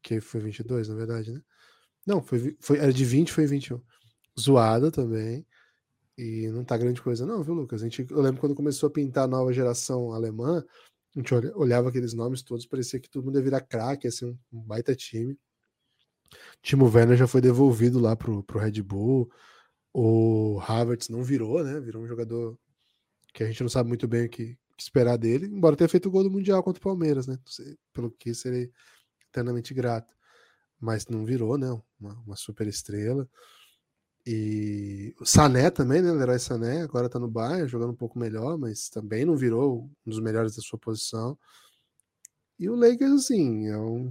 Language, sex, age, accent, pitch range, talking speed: Portuguese, male, 10-29, Brazilian, 115-150 Hz, 190 wpm